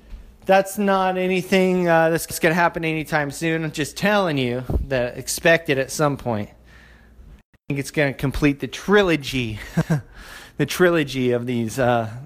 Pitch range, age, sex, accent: 130-180 Hz, 30-49, male, American